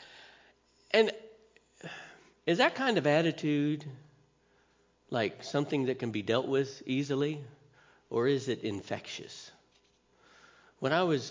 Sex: male